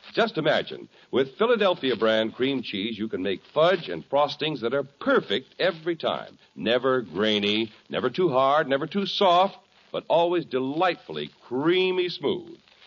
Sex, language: male, English